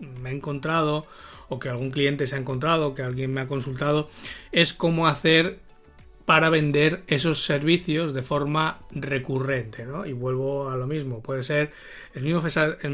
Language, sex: Spanish, male